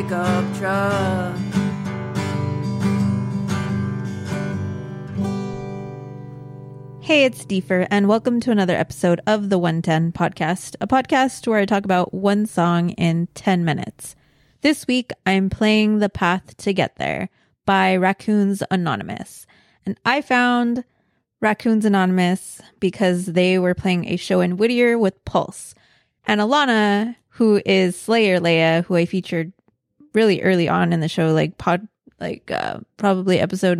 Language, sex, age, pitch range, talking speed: English, female, 20-39, 175-215 Hz, 125 wpm